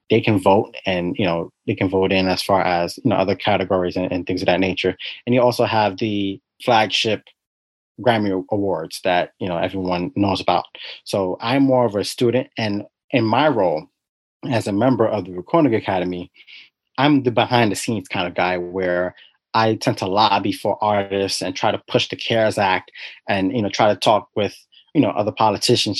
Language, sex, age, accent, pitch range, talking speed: English, male, 30-49, American, 95-110 Hz, 200 wpm